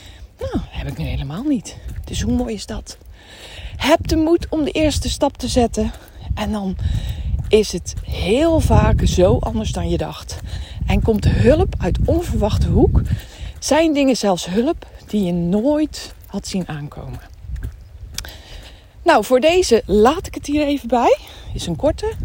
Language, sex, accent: Dutch, female, Dutch